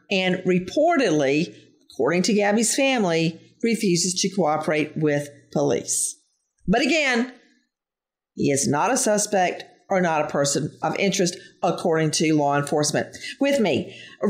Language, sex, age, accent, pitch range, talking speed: English, female, 50-69, American, 170-240 Hz, 130 wpm